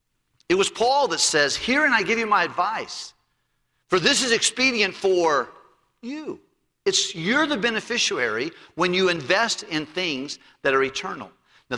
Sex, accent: male, American